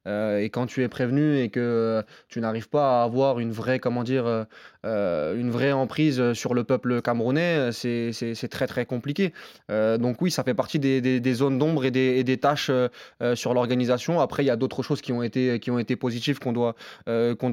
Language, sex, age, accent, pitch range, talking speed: French, male, 20-39, French, 120-140 Hz, 210 wpm